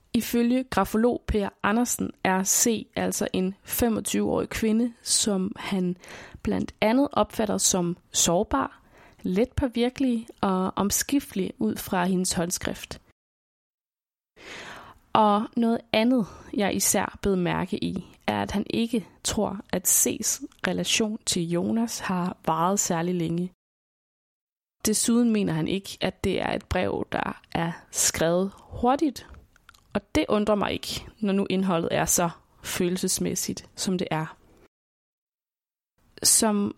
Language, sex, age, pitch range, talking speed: Danish, female, 20-39, 180-225 Hz, 120 wpm